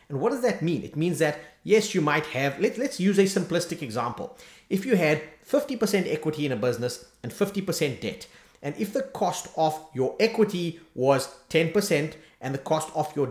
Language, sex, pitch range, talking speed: English, male, 135-180 Hz, 190 wpm